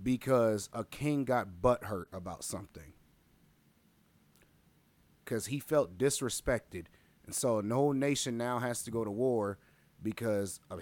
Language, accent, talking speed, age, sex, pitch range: English, American, 135 wpm, 30-49, male, 95-115 Hz